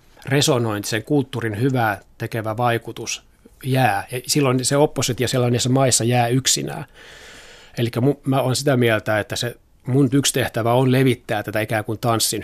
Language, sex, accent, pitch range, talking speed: Finnish, male, native, 110-125 Hz, 150 wpm